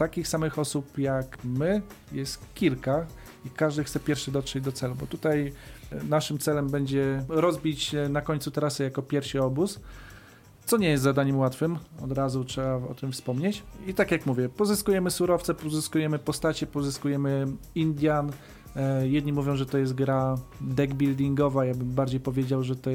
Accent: native